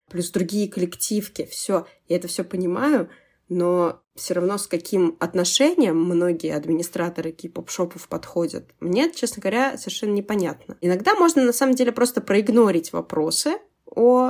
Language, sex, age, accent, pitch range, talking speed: Russian, female, 20-39, native, 170-240 Hz, 140 wpm